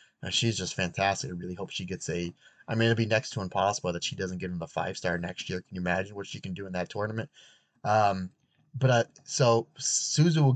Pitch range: 100-120 Hz